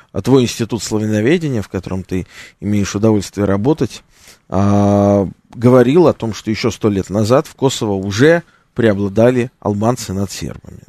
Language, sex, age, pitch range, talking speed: Russian, male, 20-39, 105-150 Hz, 145 wpm